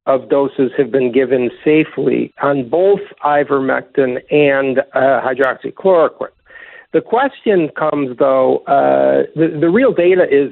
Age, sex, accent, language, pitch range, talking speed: 50-69, male, American, English, 145-215 Hz, 125 wpm